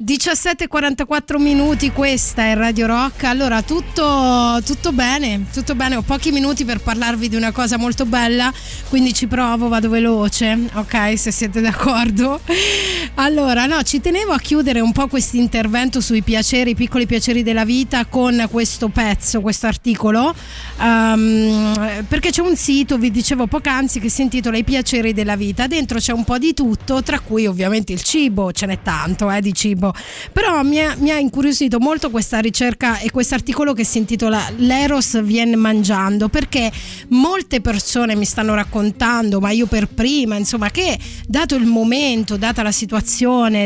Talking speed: 165 wpm